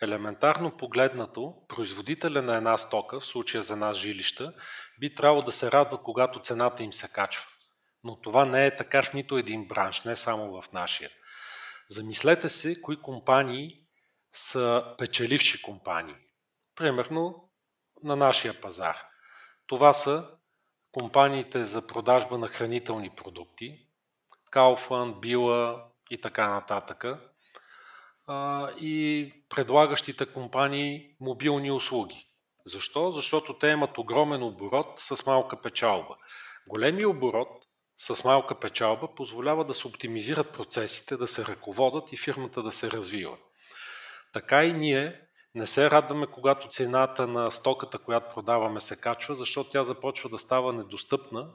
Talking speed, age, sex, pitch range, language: 130 wpm, 30-49, male, 115-145 Hz, Bulgarian